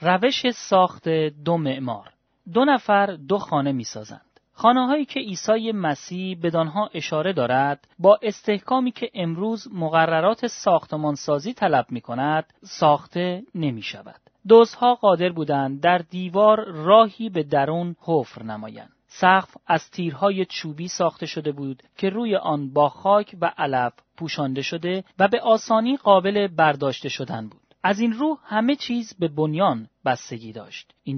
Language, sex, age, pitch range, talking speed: Persian, male, 30-49, 145-215 Hz, 140 wpm